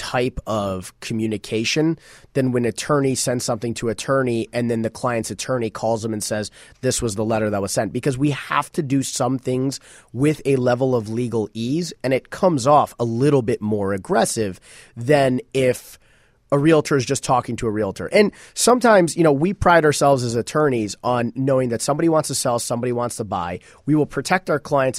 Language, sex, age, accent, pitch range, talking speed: English, male, 30-49, American, 115-150 Hz, 200 wpm